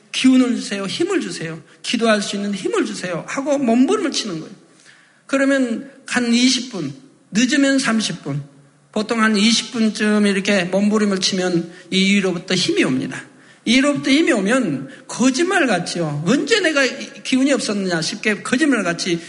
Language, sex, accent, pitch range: Korean, male, native, 175-250 Hz